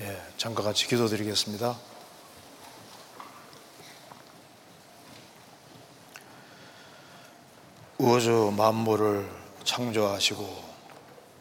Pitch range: 105-115 Hz